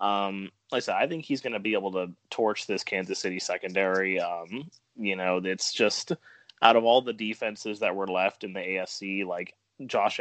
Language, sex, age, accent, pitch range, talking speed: English, male, 20-39, American, 95-115 Hz, 205 wpm